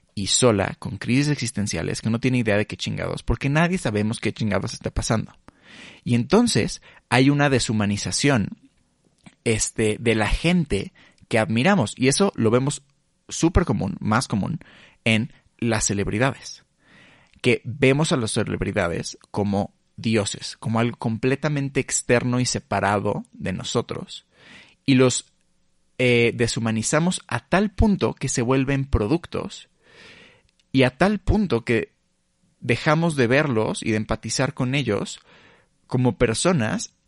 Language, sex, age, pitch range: Spanish, male, 30-49, 110-140 Hz